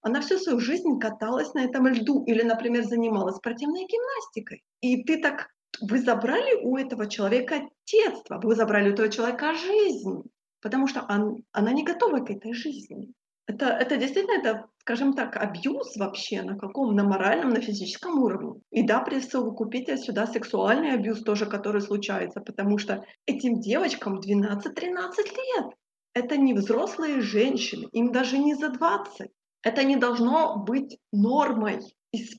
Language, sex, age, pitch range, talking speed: Ukrainian, female, 20-39, 220-280 Hz, 155 wpm